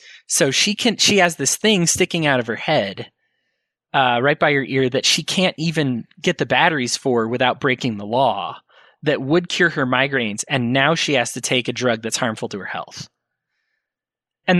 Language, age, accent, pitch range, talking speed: English, 20-39, American, 125-185 Hz, 195 wpm